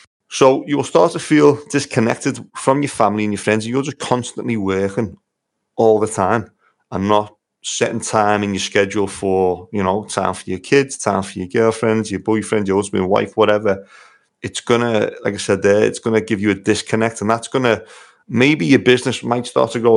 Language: English